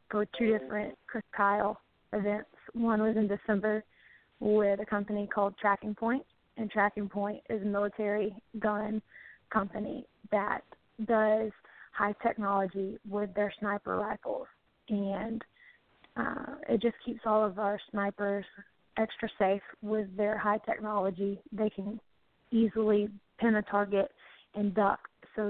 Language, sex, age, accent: English, female, 20-39, American